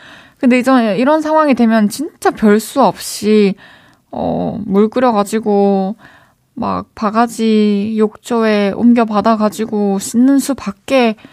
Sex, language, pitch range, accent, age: female, Korean, 175-225 Hz, native, 20-39